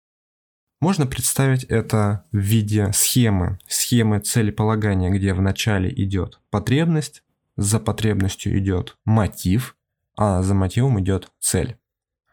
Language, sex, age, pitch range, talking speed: Russian, male, 20-39, 100-125 Hz, 105 wpm